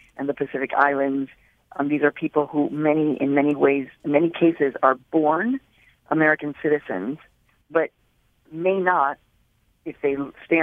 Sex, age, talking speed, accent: female, 50-69, 145 wpm, American